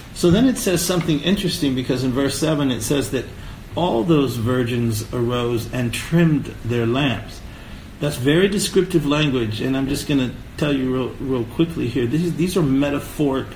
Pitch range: 120-155 Hz